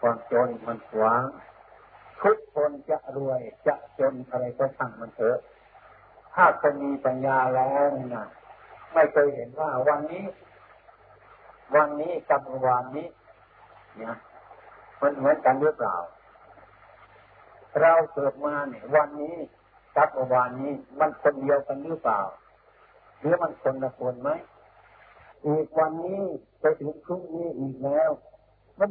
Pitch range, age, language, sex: 130-155 Hz, 50-69, Thai, male